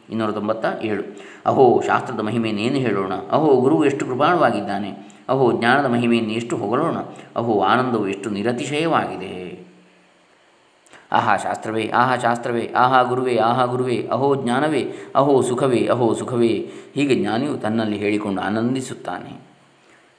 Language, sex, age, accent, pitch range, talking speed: Kannada, male, 20-39, native, 110-125 Hz, 120 wpm